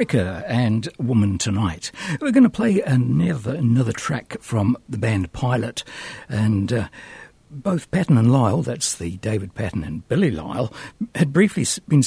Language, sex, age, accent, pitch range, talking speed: English, male, 60-79, British, 110-150 Hz, 150 wpm